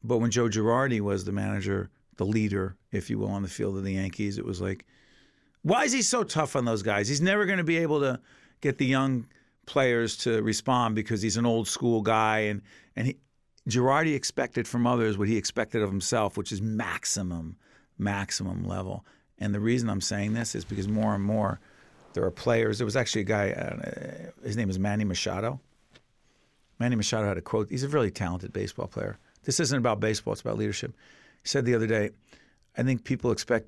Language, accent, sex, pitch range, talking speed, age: English, American, male, 100-125 Hz, 210 wpm, 50-69